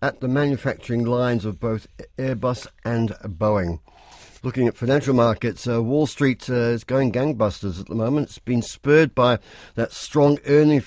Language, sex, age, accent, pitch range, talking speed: English, male, 60-79, British, 105-135 Hz, 165 wpm